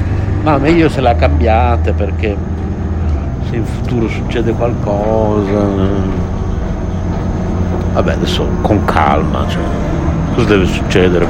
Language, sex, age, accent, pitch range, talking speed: Italian, male, 60-79, native, 85-100 Hz, 95 wpm